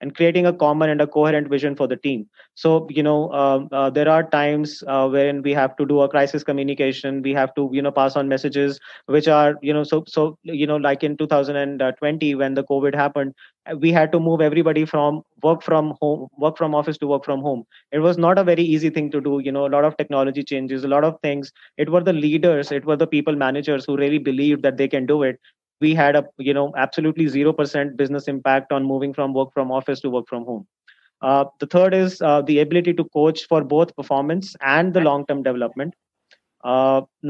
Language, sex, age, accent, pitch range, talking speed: English, male, 30-49, Indian, 135-155 Hz, 225 wpm